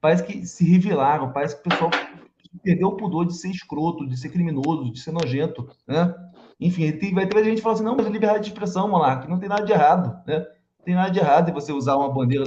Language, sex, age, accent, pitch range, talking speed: Portuguese, male, 20-39, Brazilian, 140-180 Hz, 245 wpm